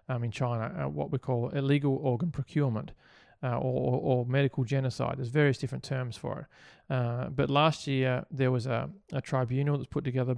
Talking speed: 195 wpm